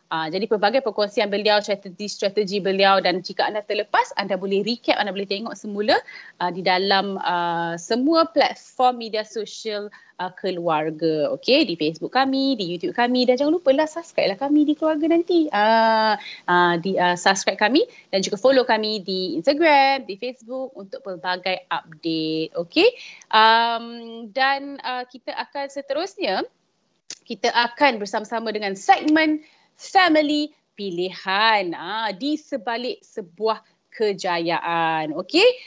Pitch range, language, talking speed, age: 195-275 Hz, Malay, 135 wpm, 30-49